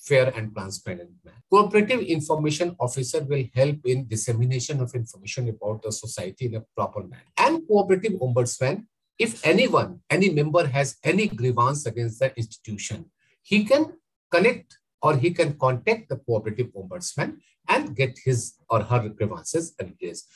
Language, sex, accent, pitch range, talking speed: English, male, Indian, 125-180 Hz, 145 wpm